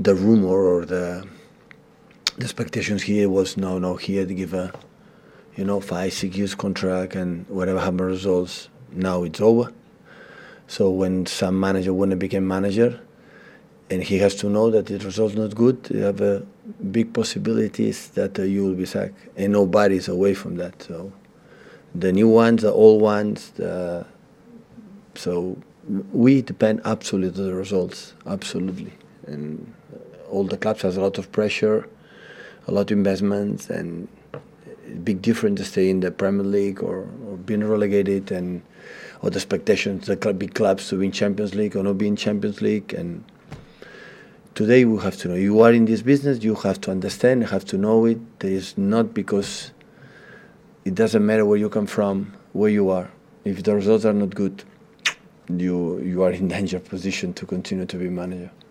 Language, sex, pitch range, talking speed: English, male, 95-110 Hz, 175 wpm